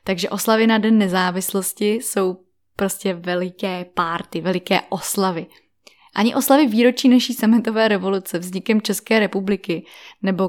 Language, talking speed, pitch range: Czech, 120 wpm, 190-245 Hz